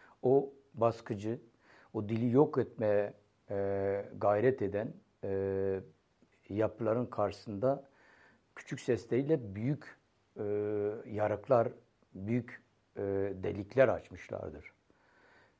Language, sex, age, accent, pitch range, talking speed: Turkish, male, 60-79, native, 105-130 Hz, 80 wpm